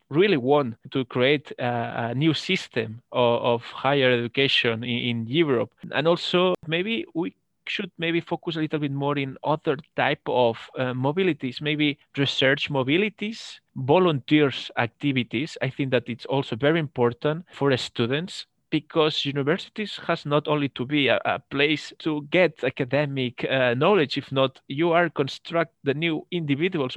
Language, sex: English, male